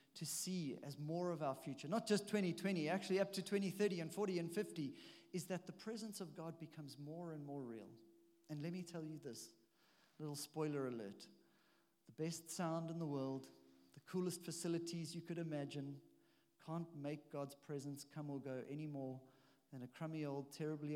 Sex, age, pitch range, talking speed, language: male, 40-59, 140-175 Hz, 185 wpm, English